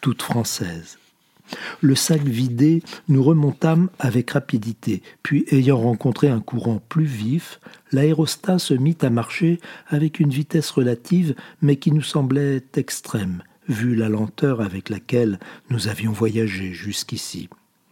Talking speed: 130 wpm